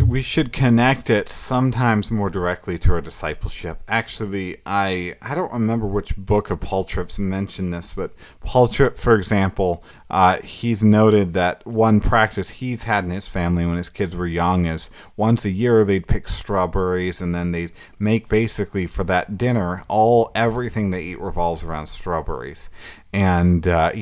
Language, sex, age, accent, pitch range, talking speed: English, male, 30-49, American, 90-110 Hz, 170 wpm